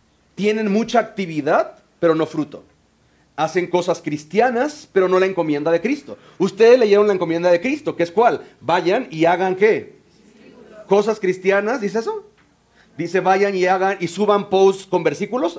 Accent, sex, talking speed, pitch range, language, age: Mexican, male, 160 wpm, 160-205 Hz, Spanish, 40-59